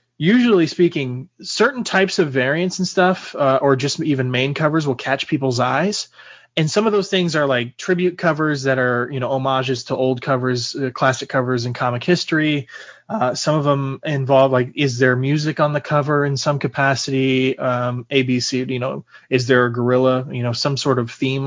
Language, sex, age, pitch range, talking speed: English, male, 20-39, 130-160 Hz, 195 wpm